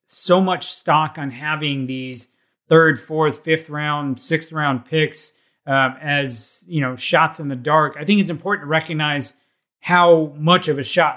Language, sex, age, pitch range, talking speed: English, male, 30-49, 135-165 Hz, 170 wpm